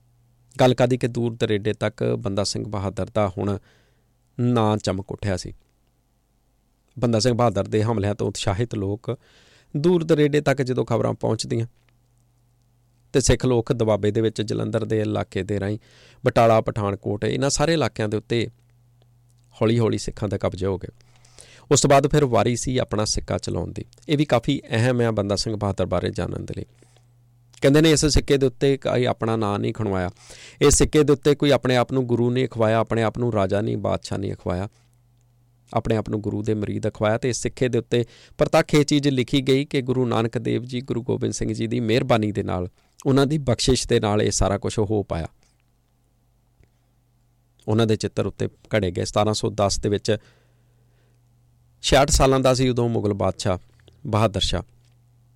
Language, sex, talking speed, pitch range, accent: English, male, 115 wpm, 105-125 Hz, Indian